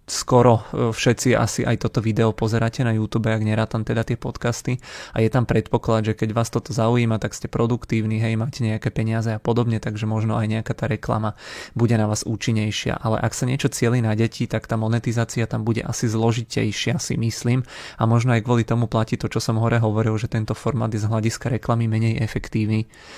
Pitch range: 110-120 Hz